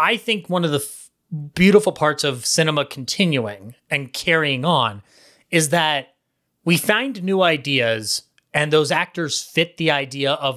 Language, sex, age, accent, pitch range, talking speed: English, male, 30-49, American, 130-165 Hz, 155 wpm